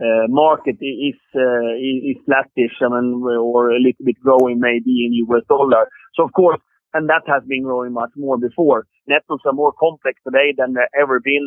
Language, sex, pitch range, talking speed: English, male, 130-150 Hz, 195 wpm